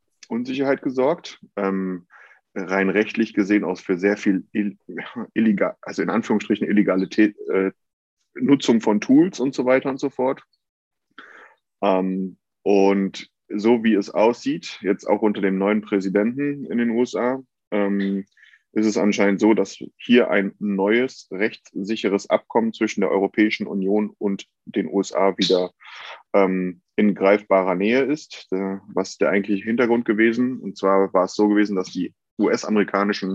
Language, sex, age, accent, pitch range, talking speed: German, male, 20-39, German, 95-110 Hz, 140 wpm